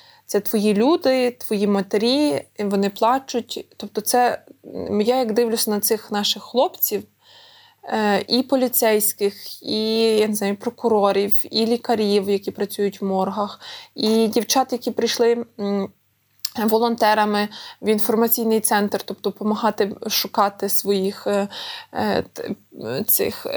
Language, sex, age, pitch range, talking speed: Ukrainian, female, 20-39, 210-255 Hz, 105 wpm